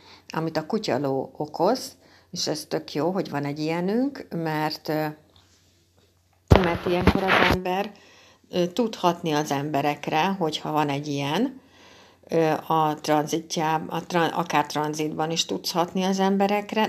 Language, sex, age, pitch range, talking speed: Hungarian, female, 60-79, 145-175 Hz, 120 wpm